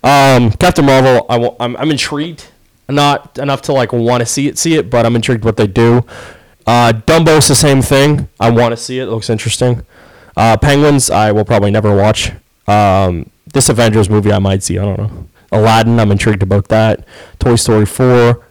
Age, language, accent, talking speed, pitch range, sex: 20-39, English, American, 200 wpm, 100-125 Hz, male